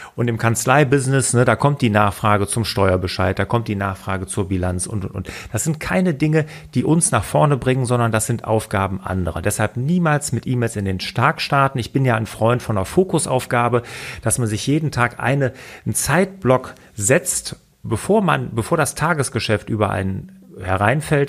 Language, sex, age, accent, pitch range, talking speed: German, male, 40-59, German, 110-145 Hz, 185 wpm